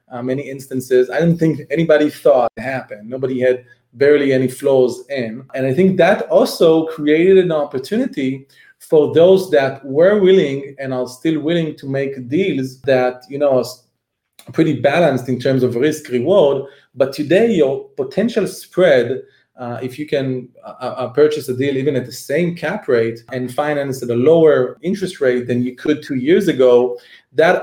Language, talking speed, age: English, 175 wpm, 30-49